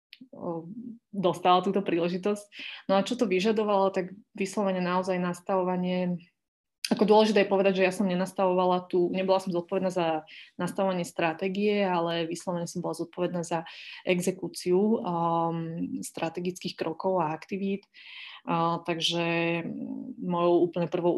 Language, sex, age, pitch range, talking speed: Slovak, female, 20-39, 170-185 Hz, 120 wpm